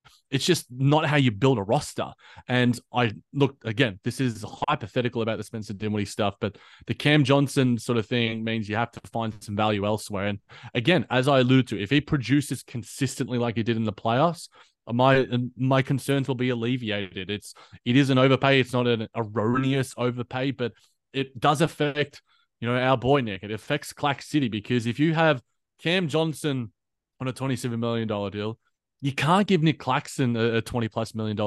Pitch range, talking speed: 115-140 Hz, 190 wpm